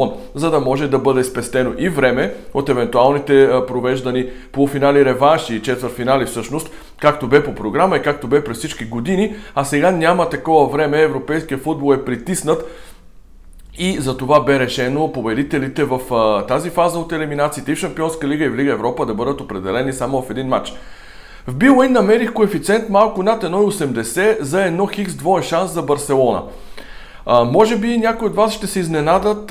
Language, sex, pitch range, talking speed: Bulgarian, male, 130-180 Hz, 175 wpm